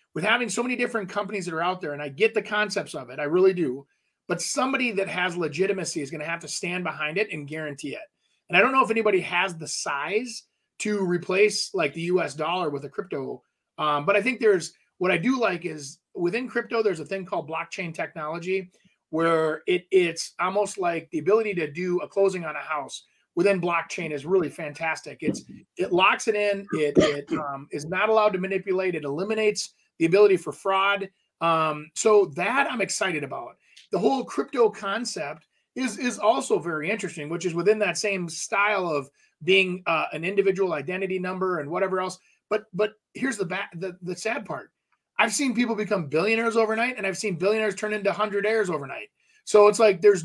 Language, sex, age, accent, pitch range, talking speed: English, male, 30-49, American, 170-215 Hz, 200 wpm